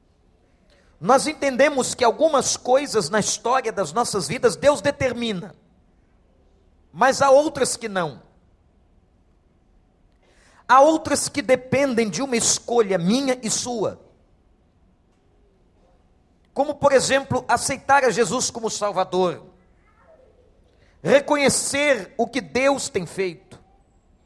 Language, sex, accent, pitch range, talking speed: English, male, Brazilian, 160-260 Hz, 100 wpm